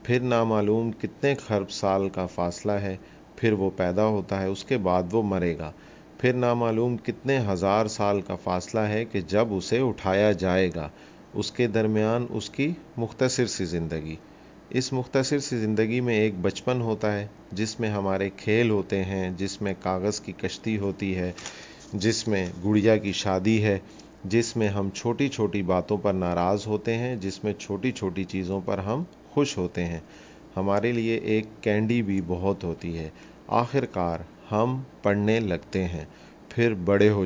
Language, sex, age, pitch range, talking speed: Urdu, male, 40-59, 95-115 Hz, 170 wpm